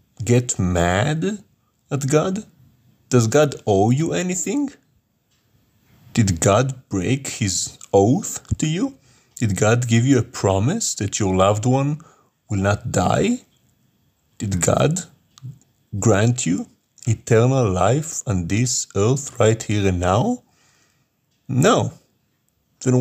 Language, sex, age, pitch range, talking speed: English, male, 40-59, 95-125 Hz, 115 wpm